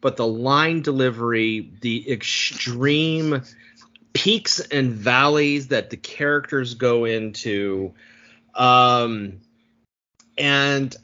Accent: American